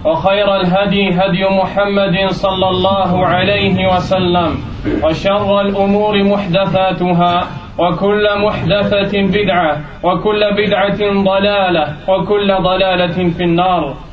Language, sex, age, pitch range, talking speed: French, male, 20-39, 185-205 Hz, 80 wpm